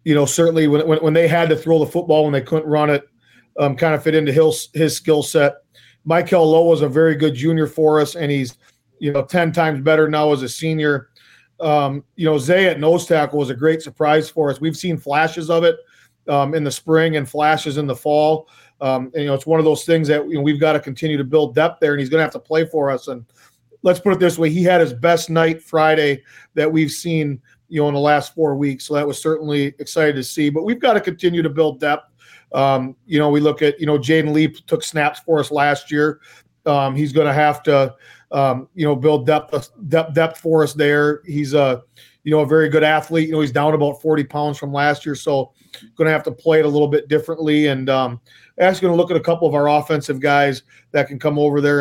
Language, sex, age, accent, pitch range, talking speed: English, male, 40-59, American, 145-160 Hz, 250 wpm